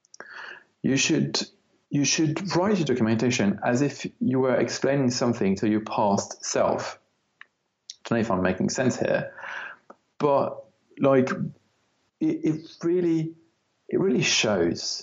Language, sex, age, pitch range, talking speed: English, male, 40-59, 110-140 Hz, 130 wpm